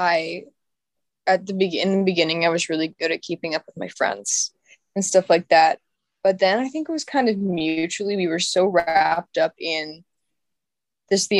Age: 10-29